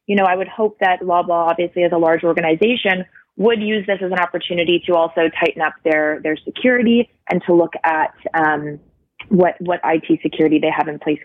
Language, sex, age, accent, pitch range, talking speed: English, female, 20-39, American, 170-205 Hz, 205 wpm